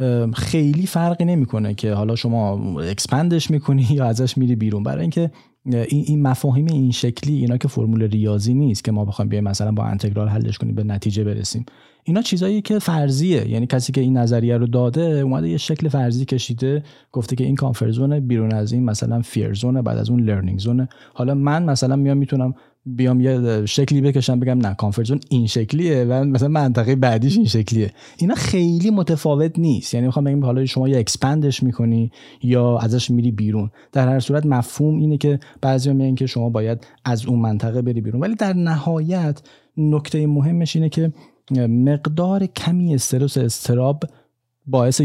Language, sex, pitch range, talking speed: Persian, male, 115-145 Hz, 170 wpm